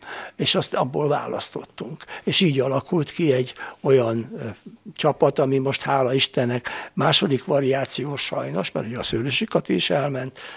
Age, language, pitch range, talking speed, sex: 60-79, Hungarian, 130-160 Hz, 135 wpm, male